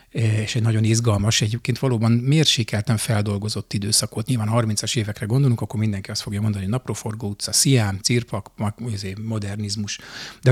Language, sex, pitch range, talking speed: Hungarian, male, 105-125 Hz, 145 wpm